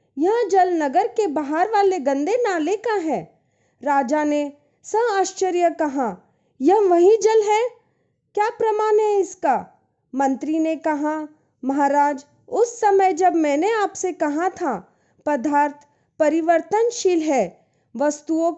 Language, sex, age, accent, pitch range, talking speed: Hindi, female, 20-39, native, 285-375 Hz, 125 wpm